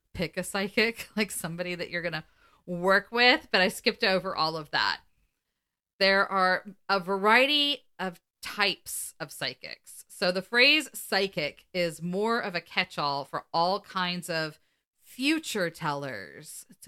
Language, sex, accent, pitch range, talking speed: English, female, American, 165-210 Hz, 150 wpm